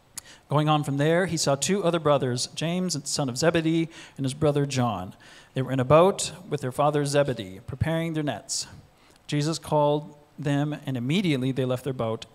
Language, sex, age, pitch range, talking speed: English, male, 40-59, 130-160 Hz, 190 wpm